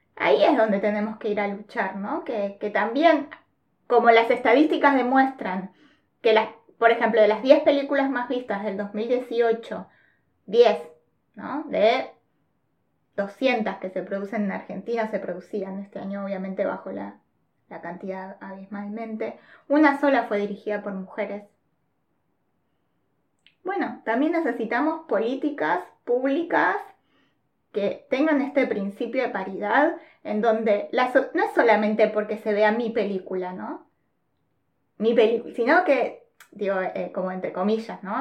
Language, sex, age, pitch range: Spanish, female, 20-39, 205-270 Hz